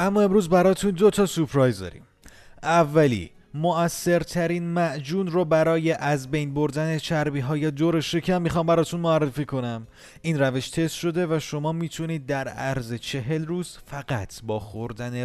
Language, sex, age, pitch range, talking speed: Persian, male, 30-49, 115-165 Hz, 150 wpm